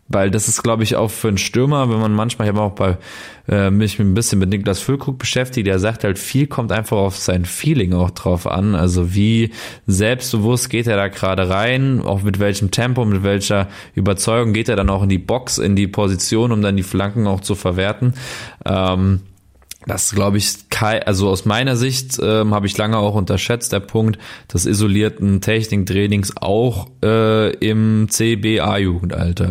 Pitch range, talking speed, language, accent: 100-120 Hz, 185 wpm, German, German